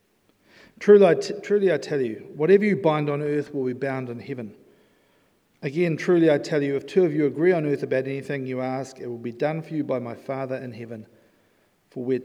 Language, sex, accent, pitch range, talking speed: English, male, Australian, 120-155 Hz, 225 wpm